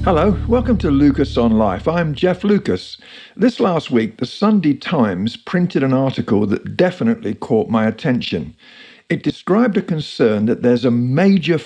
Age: 50-69